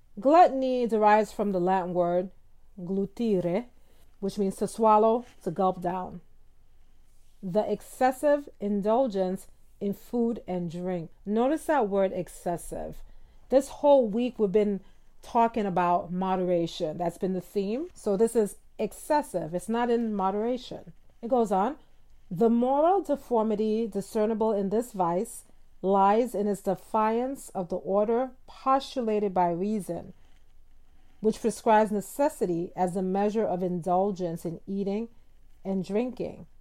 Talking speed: 125 wpm